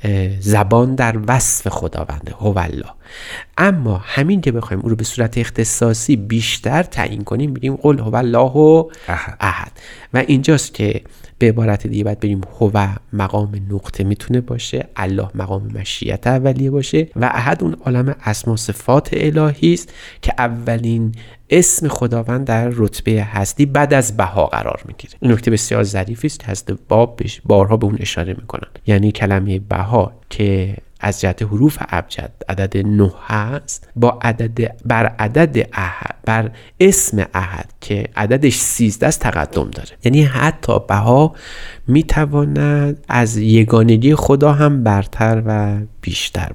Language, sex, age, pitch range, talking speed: Persian, male, 30-49, 105-130 Hz, 140 wpm